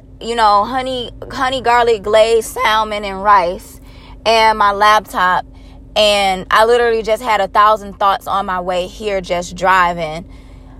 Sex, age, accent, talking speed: female, 20-39, American, 145 wpm